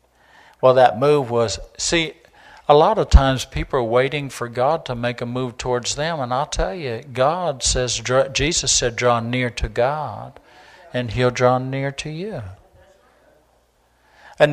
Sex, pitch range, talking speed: male, 115-135 Hz, 160 wpm